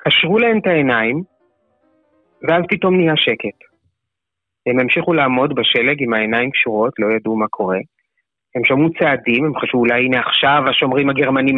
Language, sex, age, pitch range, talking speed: Hebrew, male, 30-49, 125-165 Hz, 150 wpm